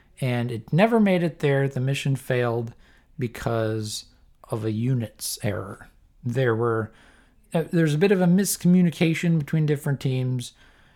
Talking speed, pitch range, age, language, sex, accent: 135 wpm, 115-150 Hz, 50-69, English, male, American